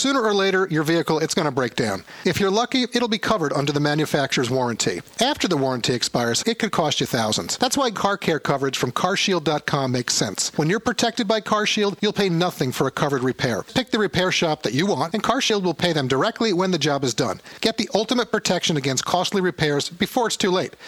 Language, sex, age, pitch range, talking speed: English, male, 40-59, 140-200 Hz, 225 wpm